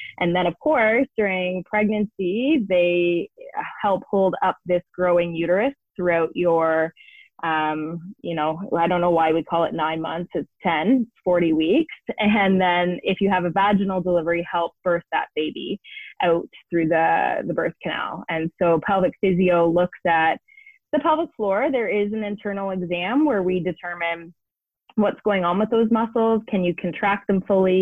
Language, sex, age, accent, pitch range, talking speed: English, female, 20-39, American, 170-200 Hz, 165 wpm